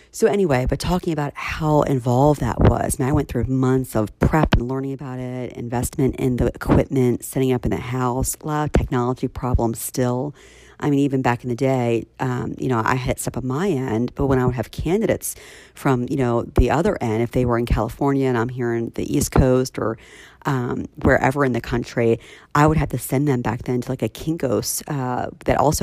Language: English